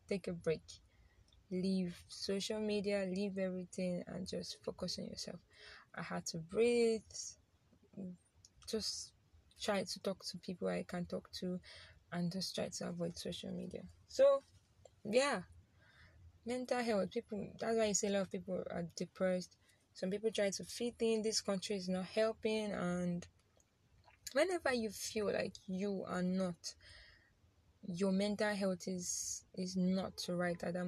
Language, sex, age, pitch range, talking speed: English, female, 20-39, 180-210 Hz, 150 wpm